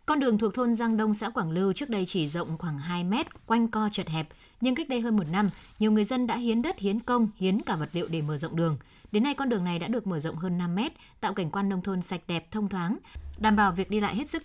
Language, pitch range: Vietnamese, 175-225 Hz